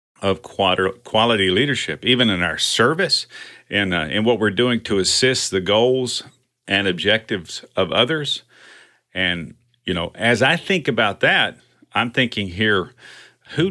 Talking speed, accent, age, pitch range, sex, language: 140 wpm, American, 50-69, 95-130 Hz, male, English